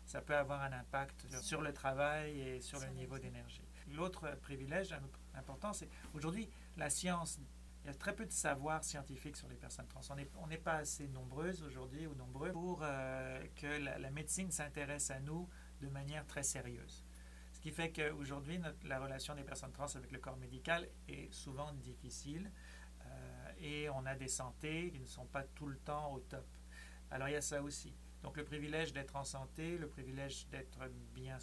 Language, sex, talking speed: French, male, 195 wpm